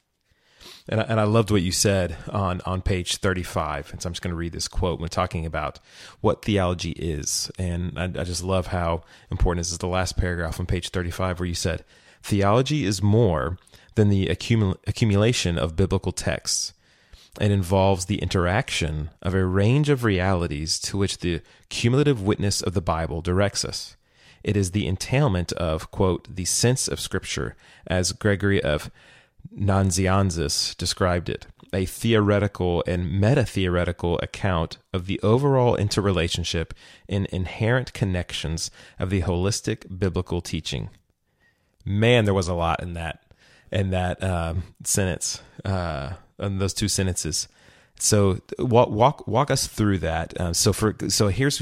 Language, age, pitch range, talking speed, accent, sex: English, 30-49, 90-105 Hz, 155 wpm, American, male